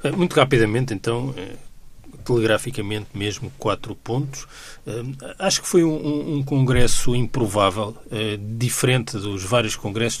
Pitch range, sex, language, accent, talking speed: 100-120 Hz, male, Portuguese, Brazilian, 105 wpm